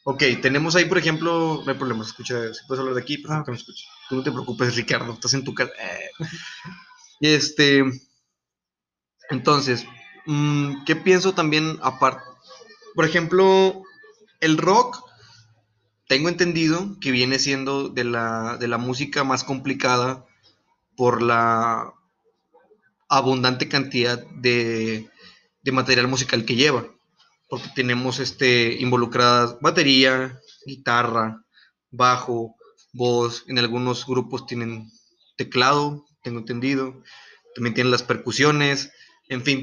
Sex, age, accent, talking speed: male, 30-49, Mexican, 125 wpm